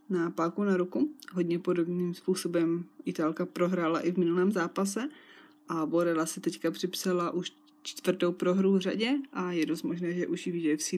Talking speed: 170 wpm